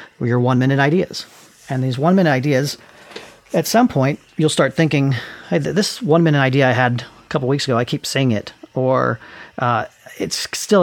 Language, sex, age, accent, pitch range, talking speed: English, male, 40-59, American, 120-160 Hz, 190 wpm